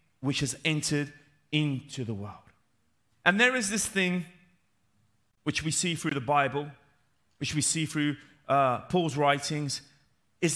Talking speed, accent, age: 140 wpm, British, 30-49